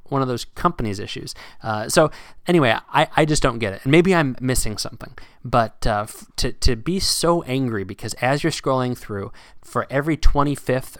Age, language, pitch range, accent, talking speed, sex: 30-49, English, 110-140 Hz, American, 185 wpm, male